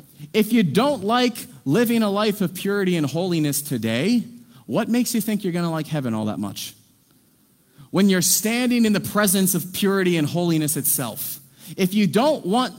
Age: 30-49